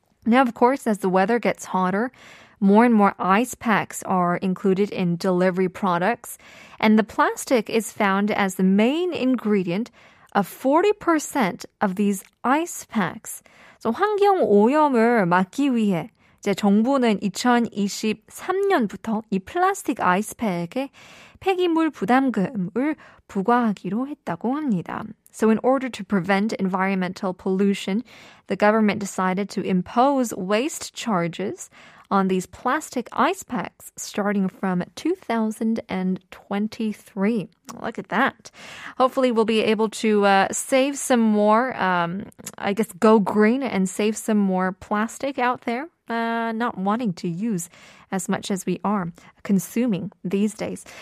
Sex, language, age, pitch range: female, Korean, 20-39, 195-255 Hz